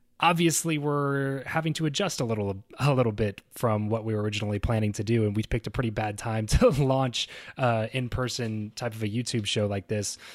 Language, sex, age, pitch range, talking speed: English, male, 20-39, 105-125 Hz, 215 wpm